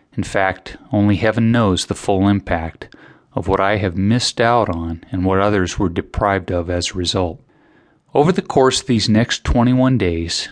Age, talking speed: 30-49, 185 wpm